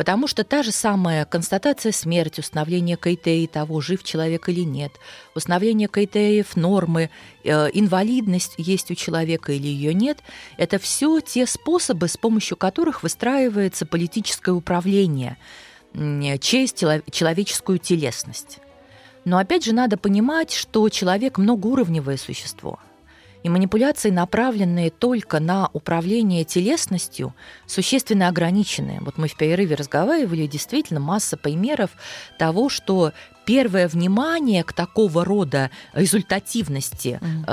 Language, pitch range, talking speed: Russian, 160-220 Hz, 115 wpm